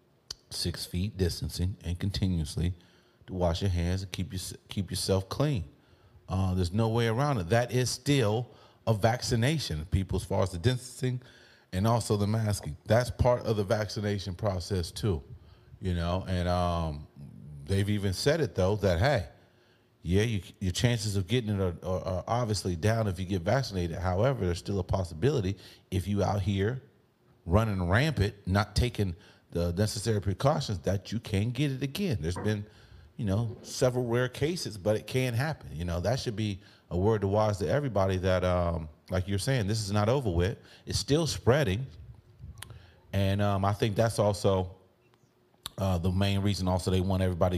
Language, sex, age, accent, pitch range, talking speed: English, male, 30-49, American, 95-115 Hz, 175 wpm